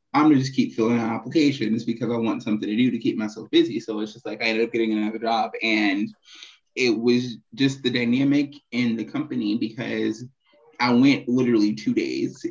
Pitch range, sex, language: 110-125 Hz, male, English